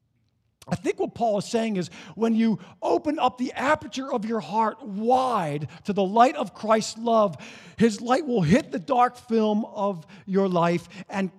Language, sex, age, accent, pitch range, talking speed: English, male, 50-69, American, 145-235 Hz, 180 wpm